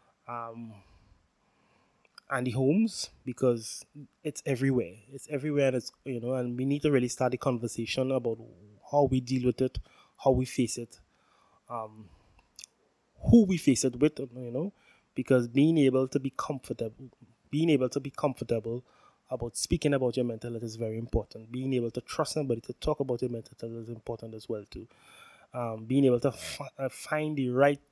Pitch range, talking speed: 120-135 Hz, 175 wpm